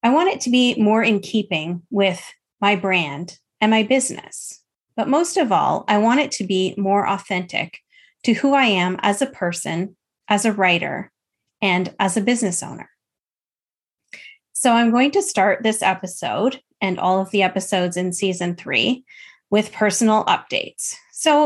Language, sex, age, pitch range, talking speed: English, female, 30-49, 185-240 Hz, 165 wpm